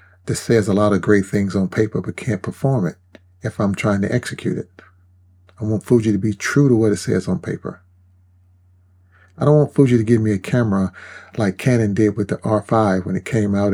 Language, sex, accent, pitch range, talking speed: English, male, American, 90-110 Hz, 220 wpm